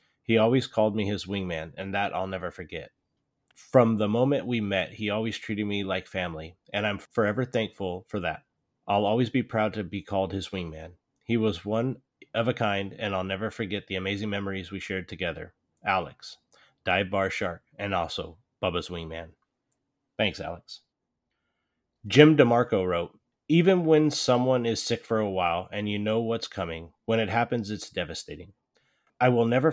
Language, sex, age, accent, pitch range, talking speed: English, male, 30-49, American, 100-120 Hz, 175 wpm